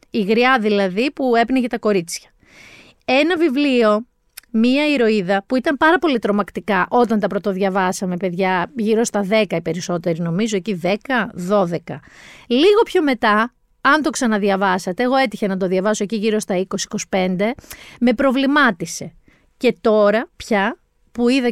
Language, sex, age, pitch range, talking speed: Greek, female, 30-49, 195-260 Hz, 135 wpm